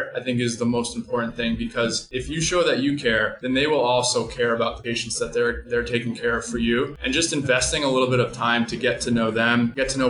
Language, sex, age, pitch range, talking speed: English, male, 20-39, 115-130 Hz, 275 wpm